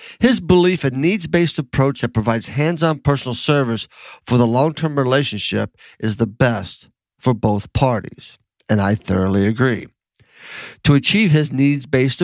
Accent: American